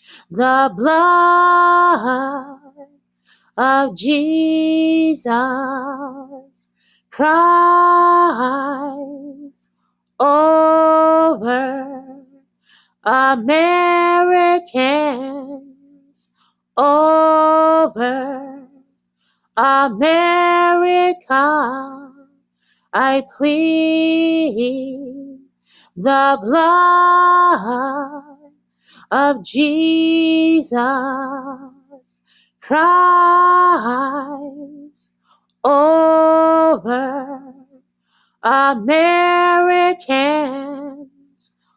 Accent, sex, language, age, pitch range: American, female, English, 30-49, 270-320 Hz